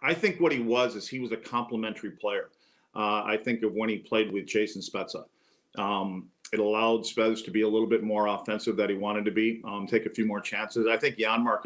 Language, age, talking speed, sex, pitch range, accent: English, 40-59, 235 wpm, male, 110-120 Hz, American